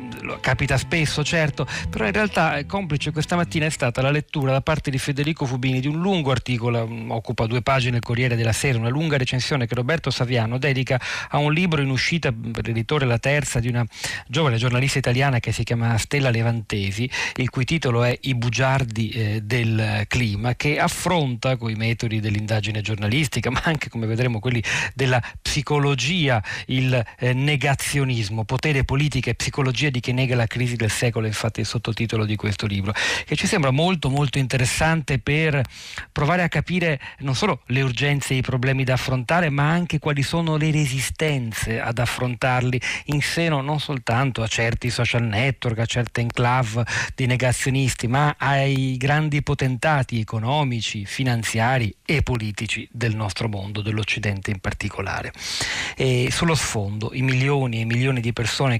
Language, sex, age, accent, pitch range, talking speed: Italian, male, 40-59, native, 115-145 Hz, 160 wpm